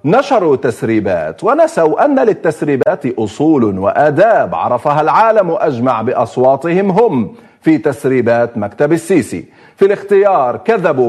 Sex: male